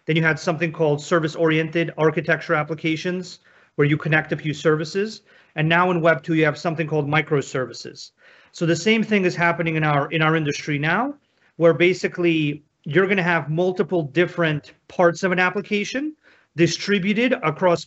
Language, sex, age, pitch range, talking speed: English, male, 40-59, 155-180 Hz, 170 wpm